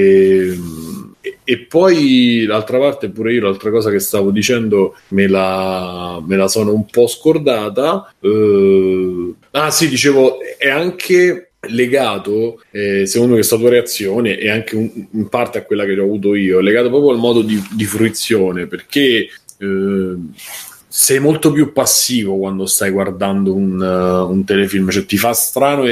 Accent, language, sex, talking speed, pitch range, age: native, Italian, male, 160 wpm, 95-120 Hz, 30-49